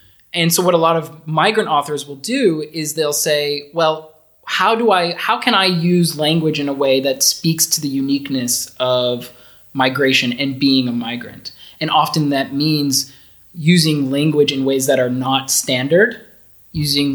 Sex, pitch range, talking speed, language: male, 135-160 Hz, 170 wpm, English